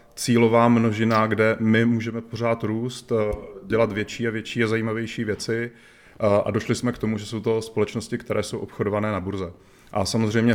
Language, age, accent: Czech, 30-49, native